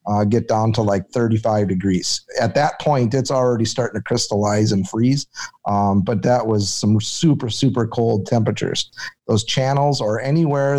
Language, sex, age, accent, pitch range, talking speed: English, male, 30-49, American, 110-130 Hz, 165 wpm